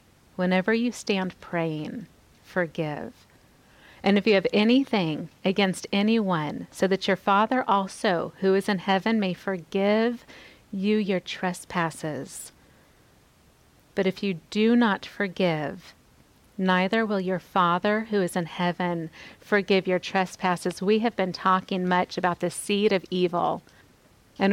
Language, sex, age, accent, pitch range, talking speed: English, female, 40-59, American, 180-210 Hz, 130 wpm